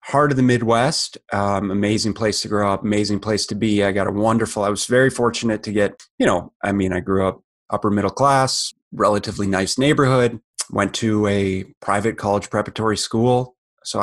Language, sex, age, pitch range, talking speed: English, male, 30-49, 100-115 Hz, 195 wpm